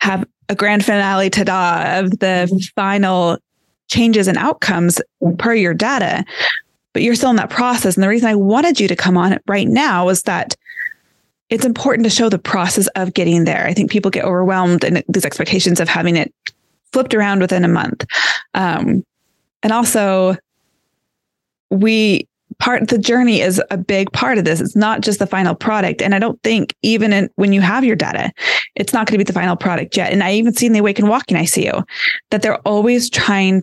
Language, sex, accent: English, female, American